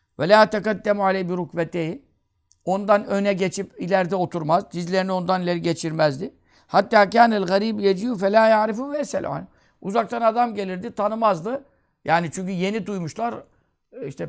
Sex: male